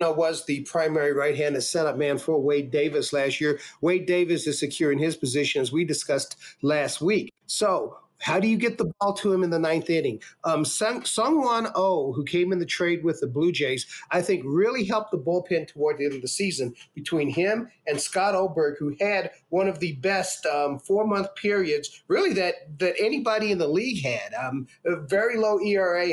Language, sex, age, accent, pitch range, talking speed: English, male, 40-59, American, 155-200 Hz, 200 wpm